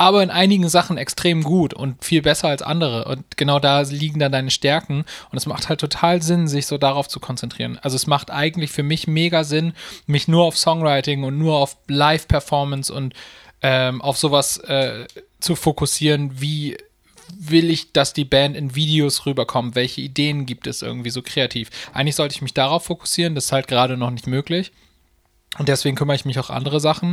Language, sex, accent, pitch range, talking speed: German, male, German, 130-155 Hz, 190 wpm